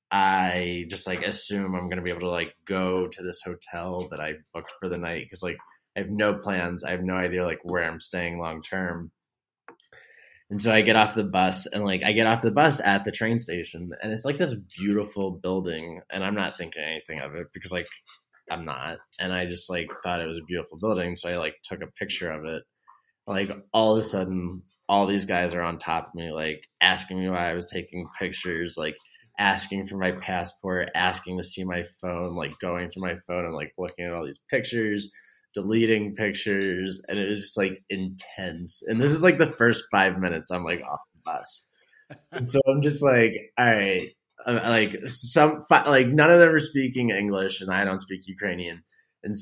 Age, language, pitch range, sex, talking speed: 20-39, English, 90-105 Hz, male, 215 wpm